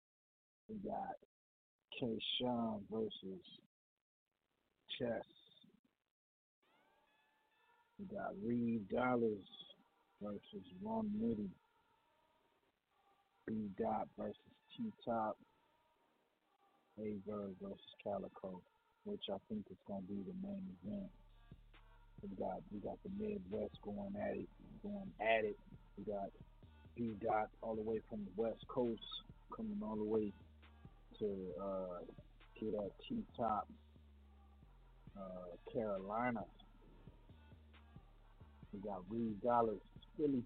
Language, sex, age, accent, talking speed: English, male, 40-59, American, 100 wpm